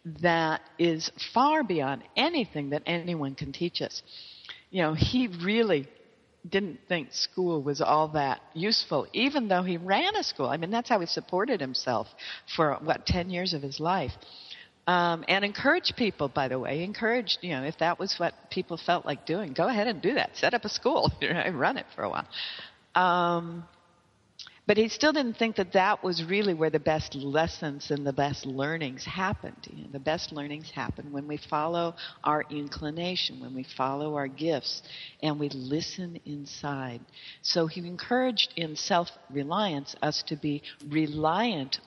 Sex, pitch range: female, 145-180 Hz